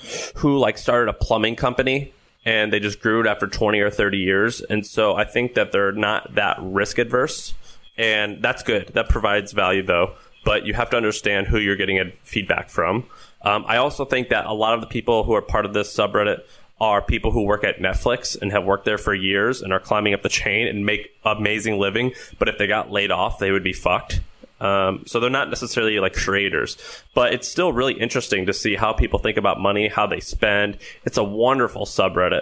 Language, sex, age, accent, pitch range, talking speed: English, male, 20-39, American, 100-115 Hz, 215 wpm